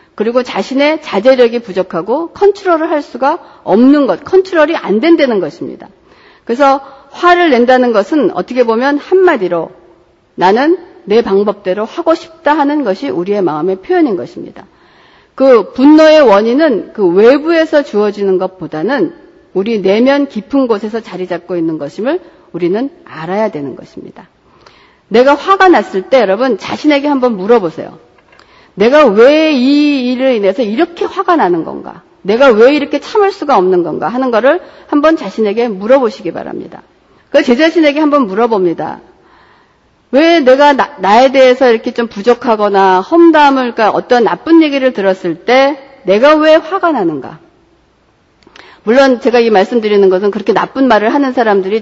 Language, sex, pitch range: Korean, female, 210-310 Hz